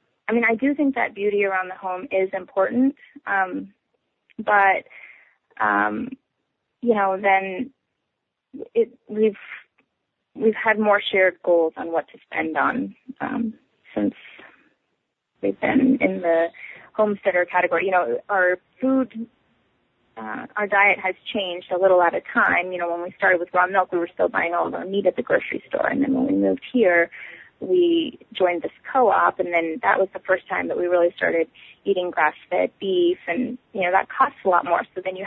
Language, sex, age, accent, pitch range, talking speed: English, female, 20-39, American, 180-230 Hz, 180 wpm